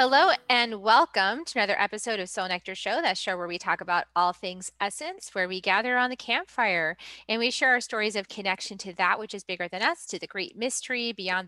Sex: female